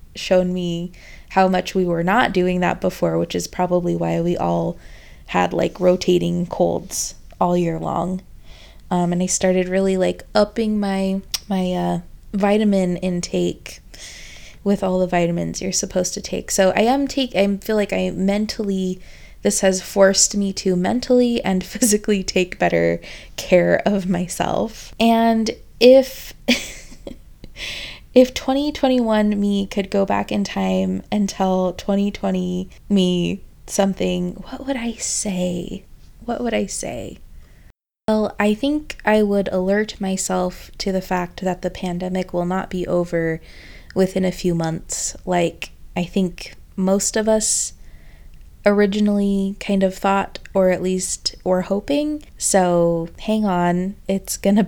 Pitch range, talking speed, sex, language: 180-205 Hz, 140 wpm, female, English